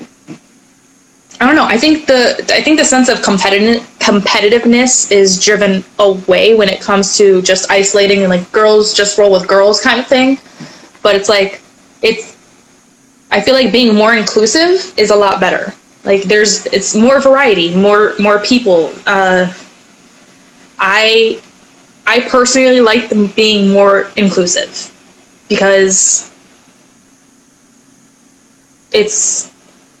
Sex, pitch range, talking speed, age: female, 195-235 Hz, 130 wpm, 20-39